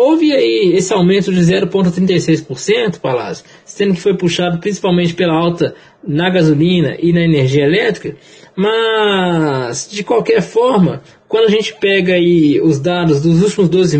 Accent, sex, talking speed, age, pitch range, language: Brazilian, male, 145 wpm, 20-39, 160-210 Hz, Portuguese